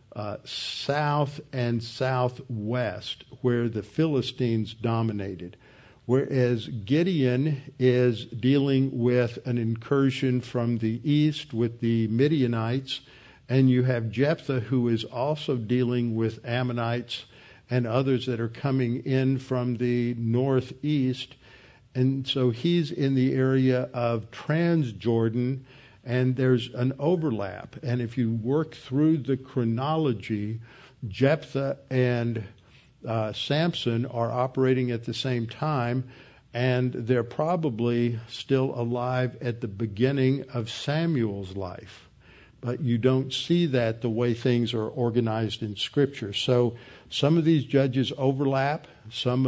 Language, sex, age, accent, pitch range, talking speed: English, male, 50-69, American, 115-135 Hz, 120 wpm